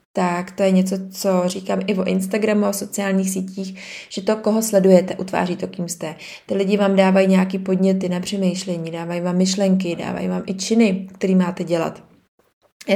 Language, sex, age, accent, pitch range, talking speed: Czech, female, 20-39, native, 185-205 Hz, 180 wpm